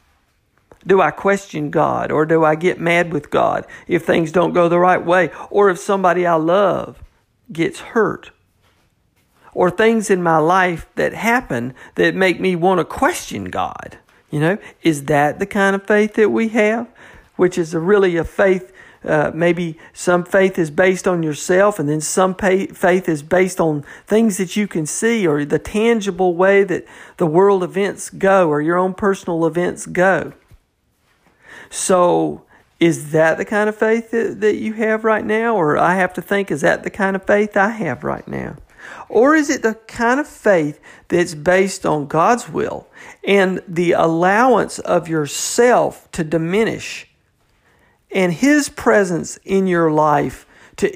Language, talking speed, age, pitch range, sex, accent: English, 170 wpm, 50-69, 165-205 Hz, male, American